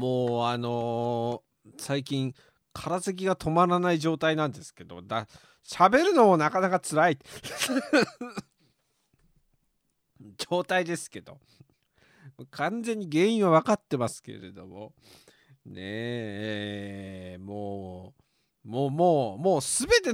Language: Japanese